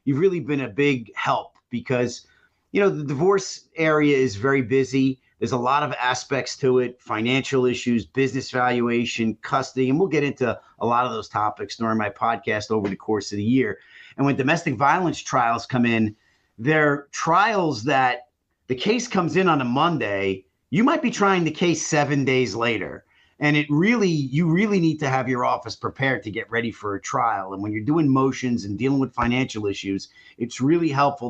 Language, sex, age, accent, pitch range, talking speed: English, male, 40-59, American, 110-140 Hz, 195 wpm